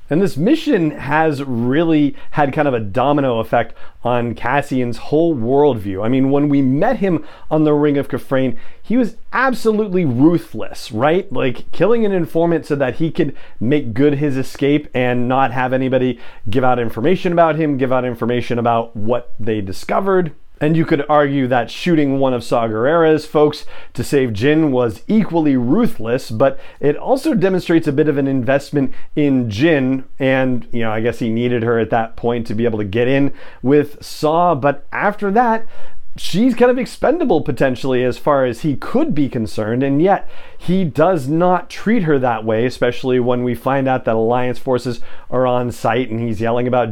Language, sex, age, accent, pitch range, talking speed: English, male, 40-59, American, 125-160 Hz, 185 wpm